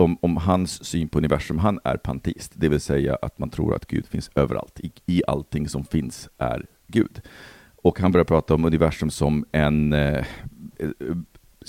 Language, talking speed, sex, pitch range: Swedish, 180 wpm, male, 75-95 Hz